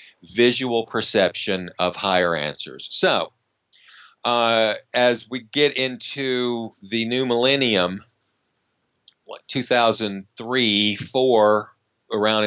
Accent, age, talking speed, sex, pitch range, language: American, 50-69, 85 wpm, male, 105-130 Hz, English